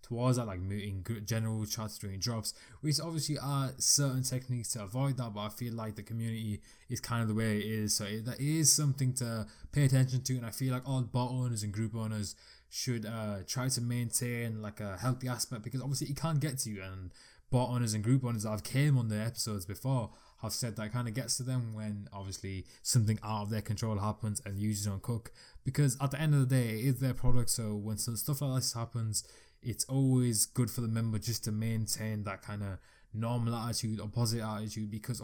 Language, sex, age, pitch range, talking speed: English, male, 20-39, 110-130 Hz, 225 wpm